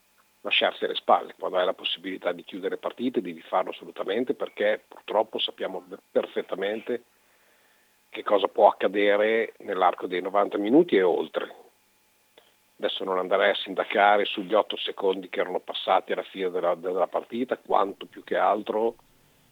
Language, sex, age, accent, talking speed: Italian, male, 50-69, native, 145 wpm